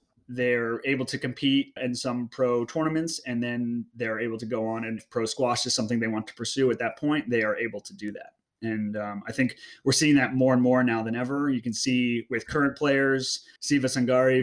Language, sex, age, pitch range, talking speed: English, male, 30-49, 115-135 Hz, 225 wpm